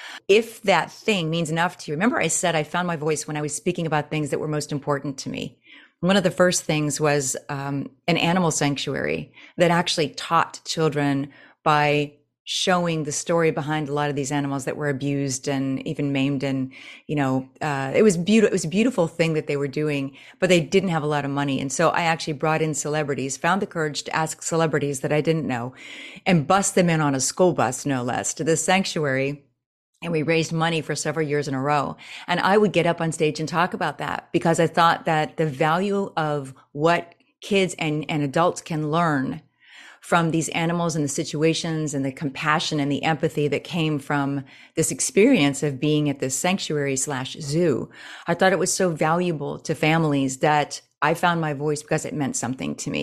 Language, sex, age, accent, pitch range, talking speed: English, female, 30-49, American, 145-170 Hz, 215 wpm